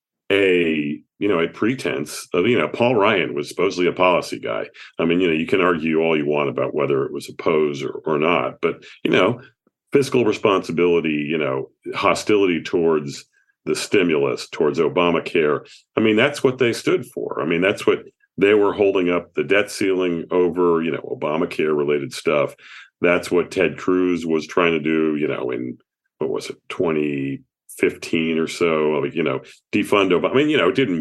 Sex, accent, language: male, American, English